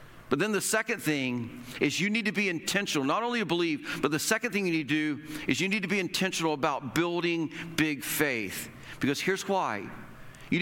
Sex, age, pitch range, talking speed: male, 50-69, 135-180 Hz, 210 wpm